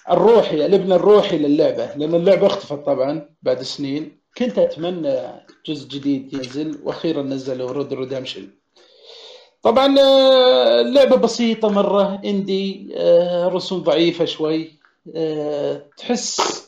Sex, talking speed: male, 105 wpm